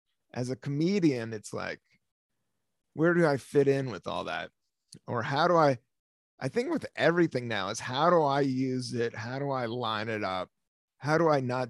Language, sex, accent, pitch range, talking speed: English, male, American, 110-150 Hz, 195 wpm